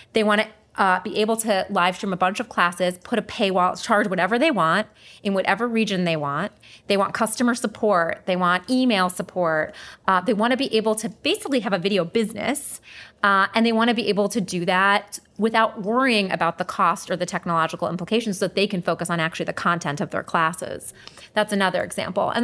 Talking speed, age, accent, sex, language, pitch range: 215 wpm, 30-49, American, female, English, 180-220 Hz